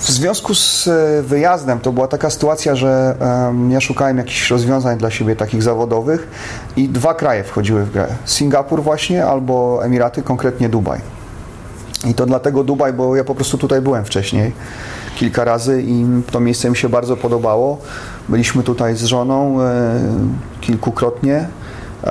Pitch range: 110-130 Hz